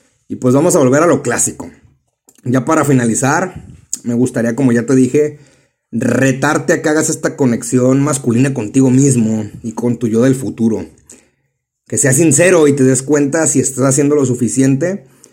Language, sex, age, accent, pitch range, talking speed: Spanish, male, 30-49, Mexican, 125-155 Hz, 170 wpm